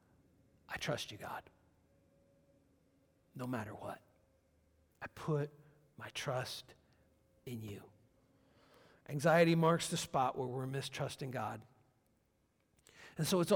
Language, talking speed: English, 105 wpm